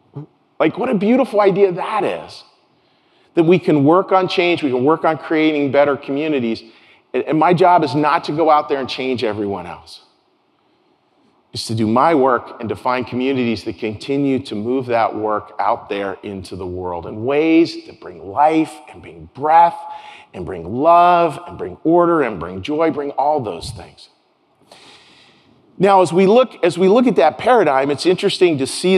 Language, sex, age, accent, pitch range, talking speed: English, male, 40-59, American, 125-180 Hz, 180 wpm